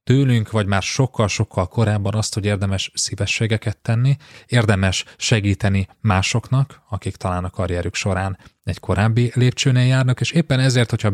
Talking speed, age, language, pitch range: 140 wpm, 30-49, Hungarian, 95-115 Hz